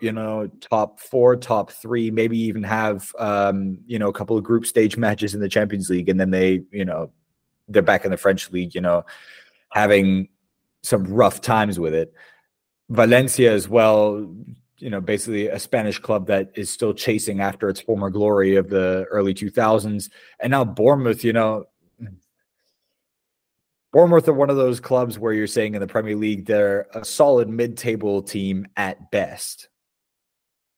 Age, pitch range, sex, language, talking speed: 30-49, 100-115 Hz, male, English, 170 wpm